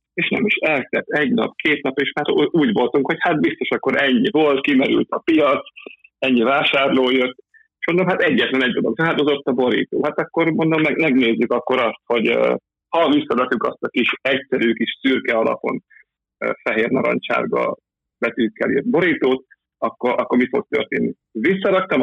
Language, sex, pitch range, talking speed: Hungarian, male, 115-145 Hz, 170 wpm